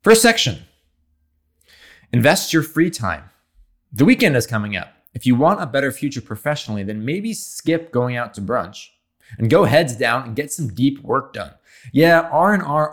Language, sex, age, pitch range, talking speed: English, male, 20-39, 95-130 Hz, 170 wpm